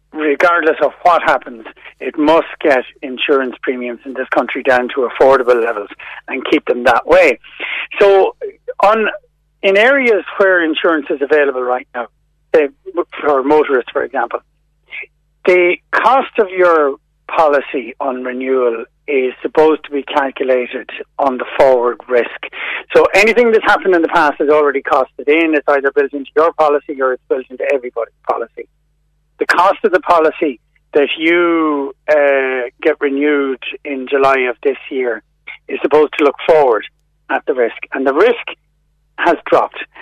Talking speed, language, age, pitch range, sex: 155 wpm, English, 60-79, 130-175 Hz, male